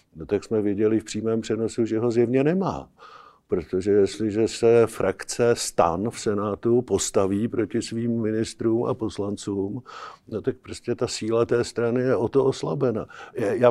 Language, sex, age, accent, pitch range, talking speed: Czech, male, 50-69, native, 90-115 Hz, 160 wpm